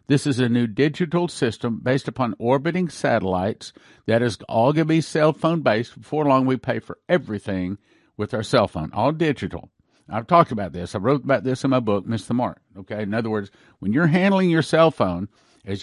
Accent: American